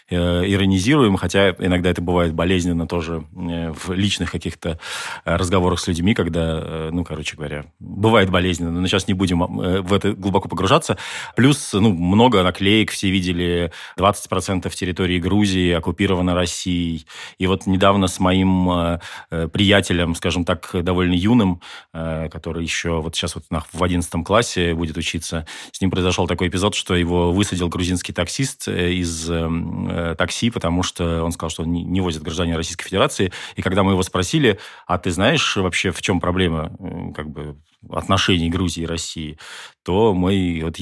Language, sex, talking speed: Russian, male, 150 wpm